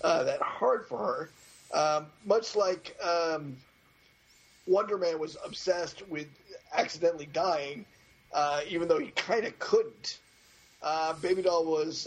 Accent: American